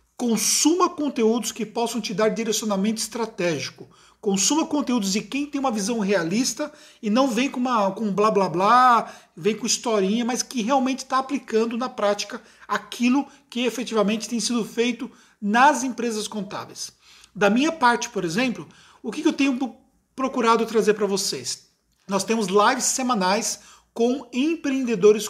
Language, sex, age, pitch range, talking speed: Portuguese, male, 40-59, 210-250 Hz, 150 wpm